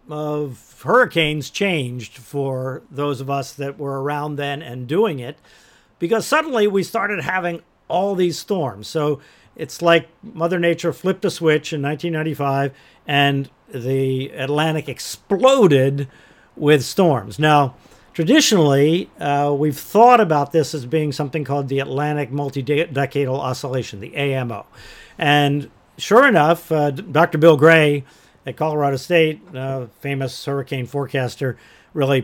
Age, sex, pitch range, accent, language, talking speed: 50-69, male, 140-160 Hz, American, English, 130 wpm